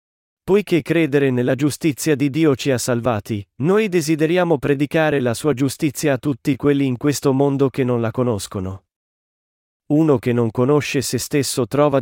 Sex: male